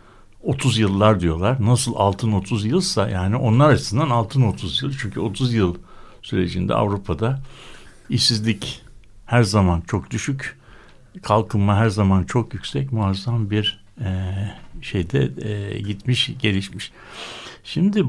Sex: male